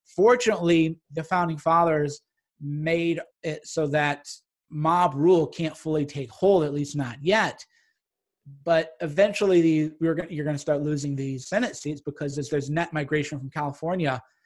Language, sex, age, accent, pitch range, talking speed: English, male, 30-49, American, 155-200 Hz, 145 wpm